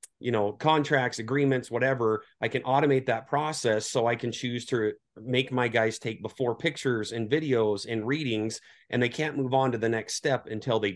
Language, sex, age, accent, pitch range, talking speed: English, male, 30-49, American, 110-130 Hz, 195 wpm